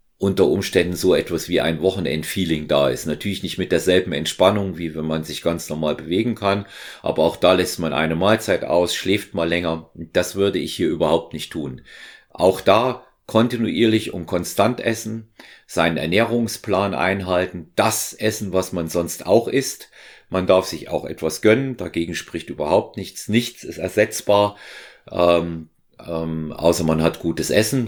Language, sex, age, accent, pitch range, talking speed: German, male, 40-59, German, 85-105 Hz, 165 wpm